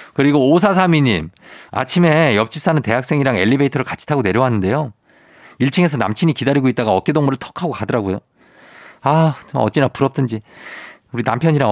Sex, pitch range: male, 105-150 Hz